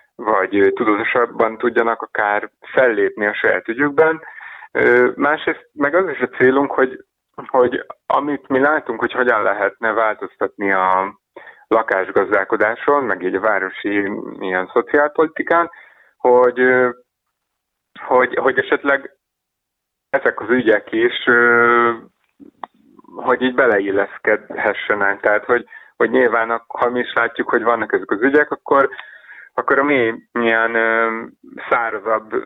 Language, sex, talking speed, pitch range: Hungarian, male, 115 wpm, 100-135 Hz